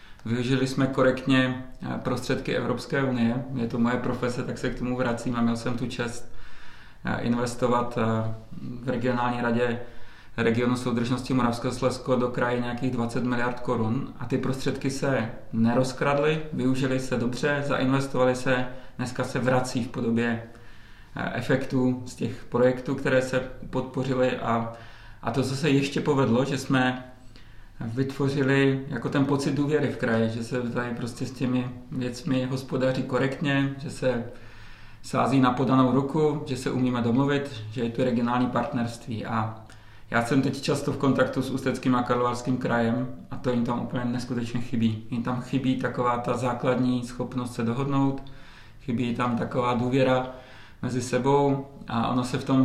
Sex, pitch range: male, 120-130 Hz